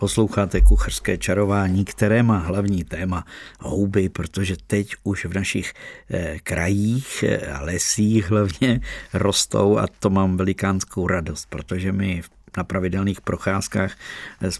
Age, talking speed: 50-69, 130 wpm